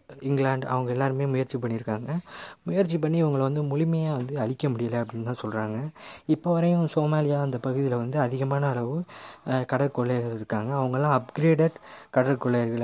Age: 20-39